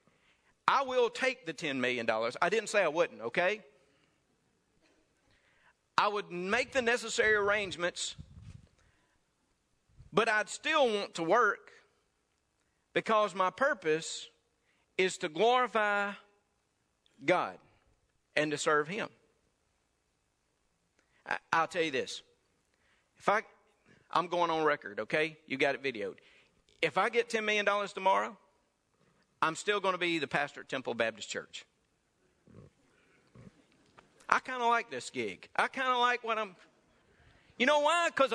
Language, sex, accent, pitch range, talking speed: English, male, American, 180-255 Hz, 130 wpm